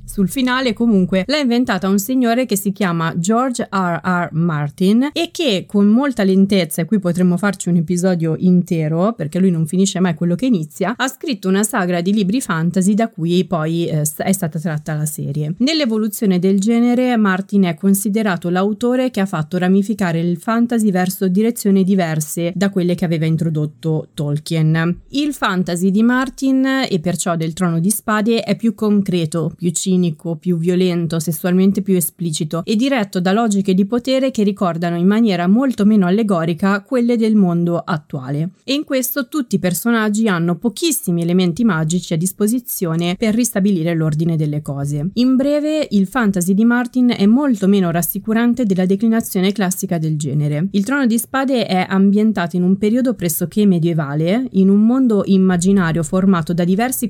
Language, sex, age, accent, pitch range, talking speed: Italian, female, 30-49, native, 175-225 Hz, 165 wpm